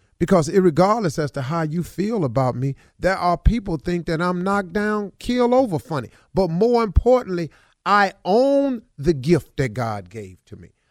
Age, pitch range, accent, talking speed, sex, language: 40-59, 150-220 Hz, American, 175 wpm, male, English